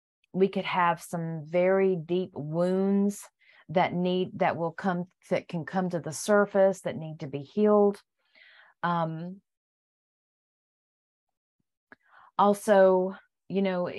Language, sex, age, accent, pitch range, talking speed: English, female, 40-59, American, 180-225 Hz, 115 wpm